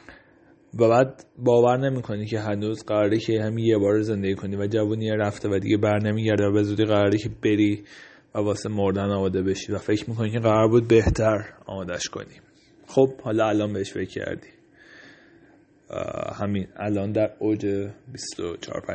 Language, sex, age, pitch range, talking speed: Persian, male, 30-49, 105-115 Hz, 160 wpm